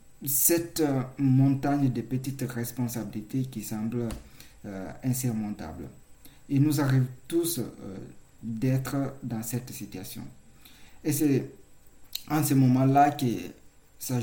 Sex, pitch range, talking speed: male, 110-135 Hz, 105 wpm